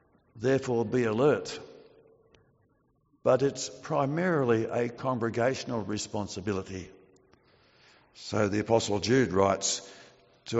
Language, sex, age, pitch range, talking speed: English, male, 60-79, 115-140 Hz, 85 wpm